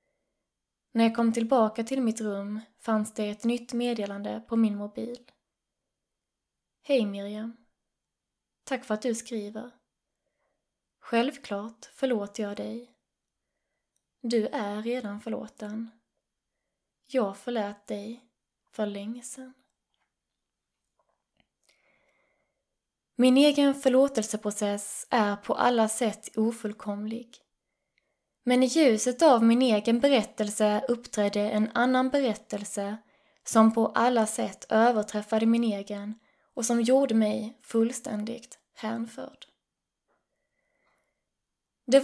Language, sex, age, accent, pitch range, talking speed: Swedish, female, 20-39, native, 210-245 Hz, 100 wpm